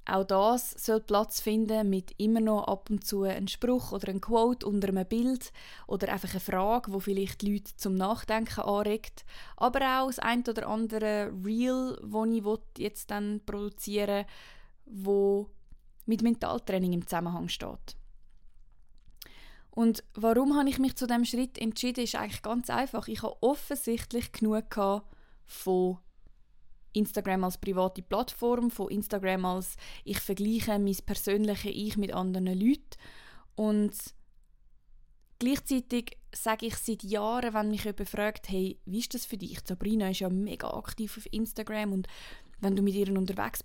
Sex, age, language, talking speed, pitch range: female, 20-39, German, 155 wpm, 195-230 Hz